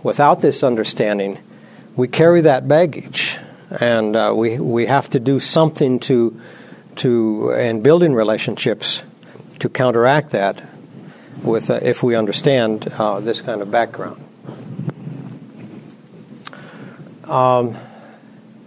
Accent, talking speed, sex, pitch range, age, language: American, 110 wpm, male, 120-155 Hz, 60-79, English